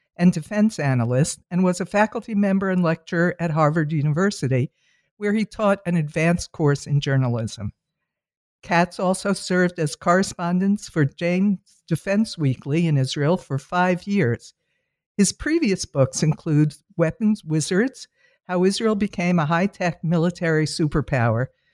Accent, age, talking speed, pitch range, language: American, 60-79, 130 wpm, 155-200 Hz, English